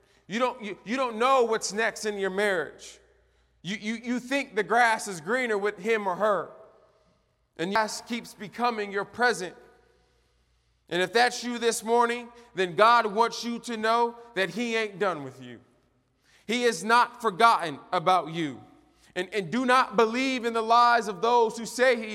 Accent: American